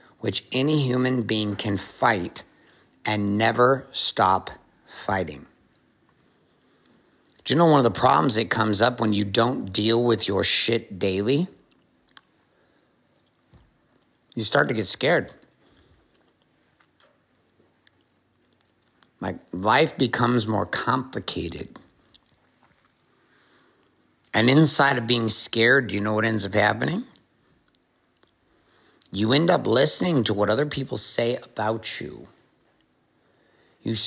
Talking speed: 110 wpm